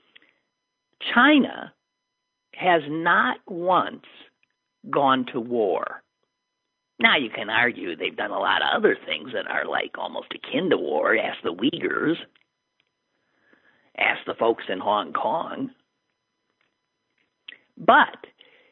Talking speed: 110 wpm